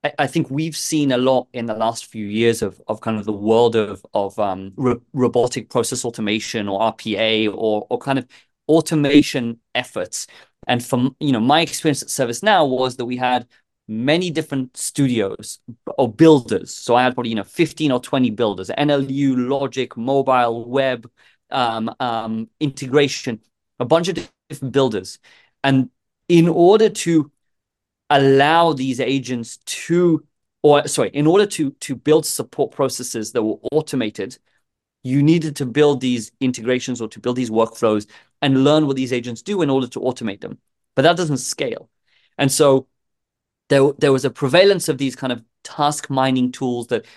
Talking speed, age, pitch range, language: 170 wpm, 30-49, 120-145 Hz, English